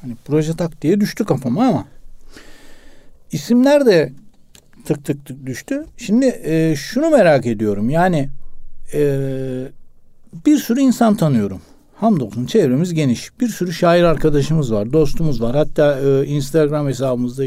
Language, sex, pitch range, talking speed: Turkish, male, 135-205 Hz, 125 wpm